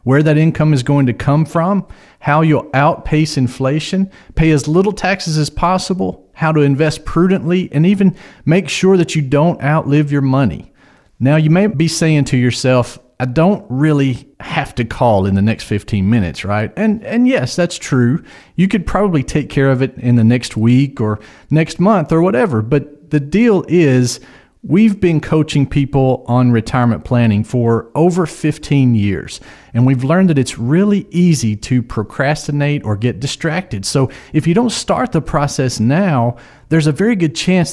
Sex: male